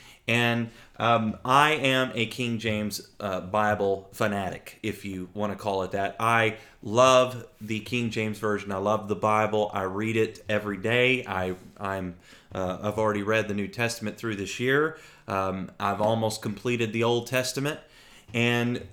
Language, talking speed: English, 165 wpm